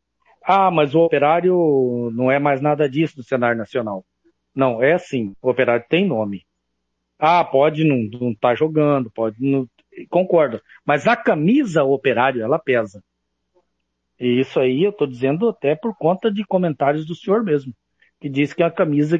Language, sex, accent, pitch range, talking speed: Portuguese, male, Brazilian, 125-200 Hz, 170 wpm